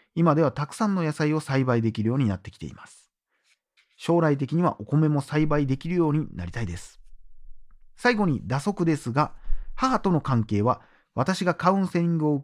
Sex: male